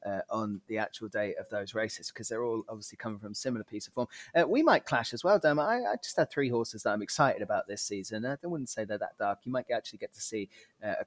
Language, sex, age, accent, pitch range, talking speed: English, male, 30-49, British, 110-125 Hz, 290 wpm